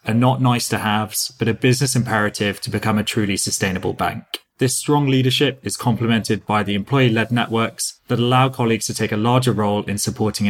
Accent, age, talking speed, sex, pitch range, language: British, 20-39, 185 wpm, male, 105-130 Hz, English